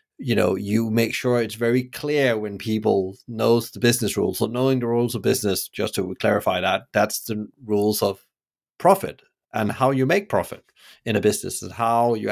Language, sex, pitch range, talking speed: English, male, 110-125 Hz, 195 wpm